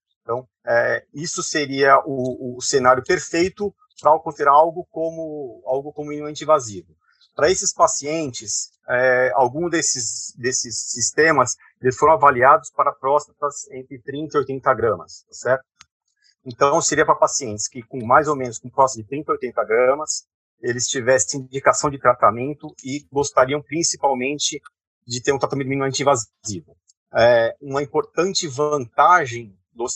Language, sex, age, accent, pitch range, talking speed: Portuguese, male, 40-59, Brazilian, 130-155 Hz, 140 wpm